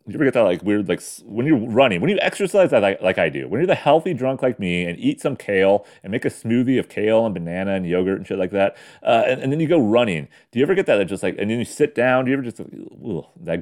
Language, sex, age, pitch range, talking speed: English, male, 30-49, 95-155 Hz, 310 wpm